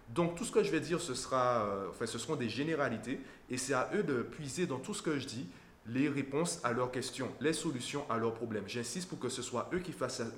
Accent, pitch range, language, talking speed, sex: French, 120-150 Hz, French, 255 wpm, male